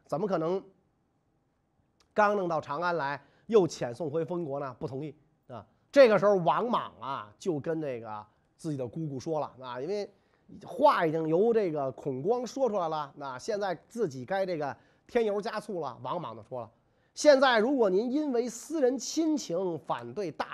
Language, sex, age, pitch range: Chinese, male, 30-49, 150-245 Hz